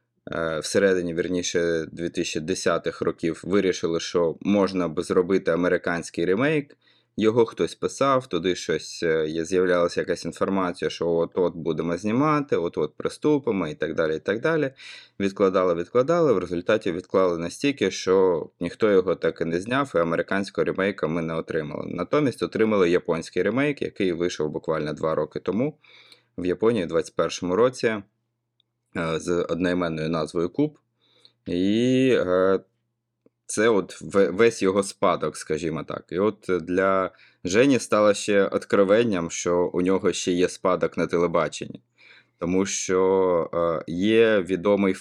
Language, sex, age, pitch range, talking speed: Ukrainian, male, 20-39, 85-105 Hz, 125 wpm